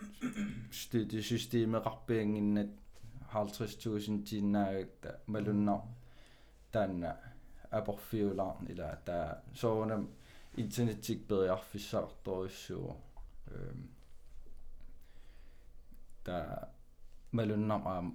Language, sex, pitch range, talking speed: Danish, male, 95-115 Hz, 75 wpm